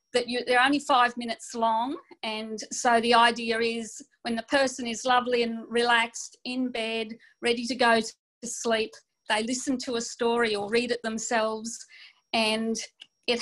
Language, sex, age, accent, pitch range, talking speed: English, female, 40-59, Australian, 220-245 Hz, 155 wpm